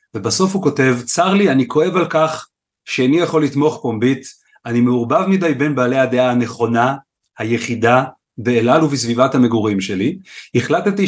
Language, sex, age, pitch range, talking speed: Hebrew, male, 40-59, 125-160 Hz, 145 wpm